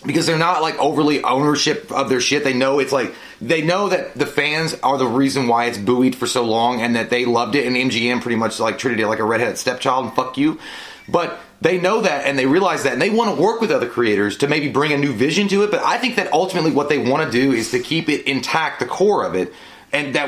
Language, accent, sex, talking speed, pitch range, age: English, American, male, 270 wpm, 135-180 Hz, 30-49